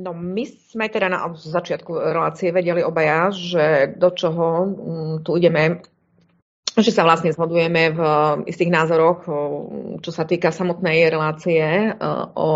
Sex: female